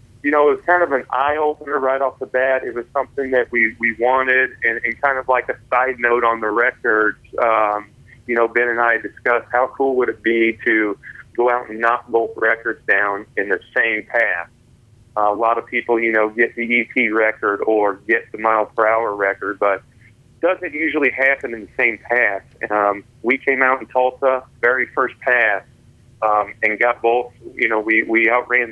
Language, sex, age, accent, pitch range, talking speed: English, male, 40-59, American, 115-135 Hz, 200 wpm